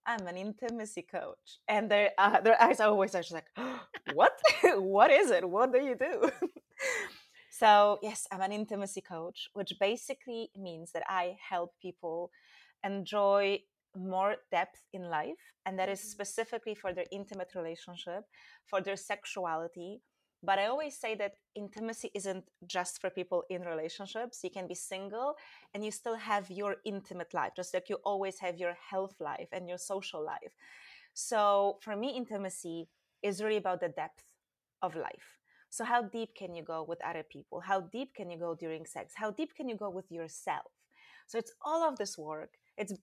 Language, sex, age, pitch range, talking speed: English, female, 30-49, 180-215 Hz, 175 wpm